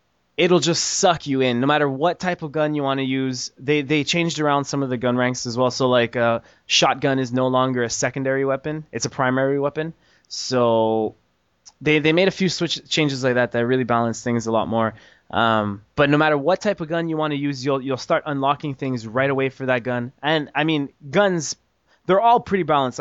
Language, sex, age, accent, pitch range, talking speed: English, male, 20-39, American, 120-155 Hz, 225 wpm